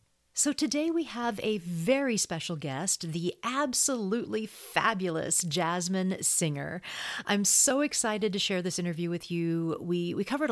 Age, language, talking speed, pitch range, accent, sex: 40-59, English, 145 wpm, 160-230 Hz, American, female